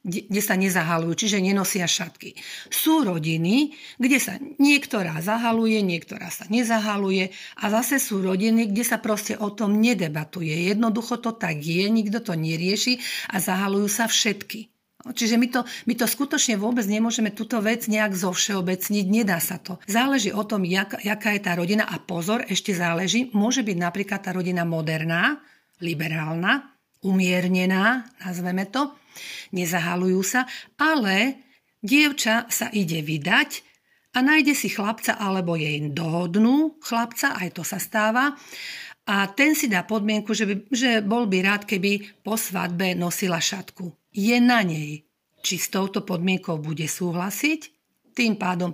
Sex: female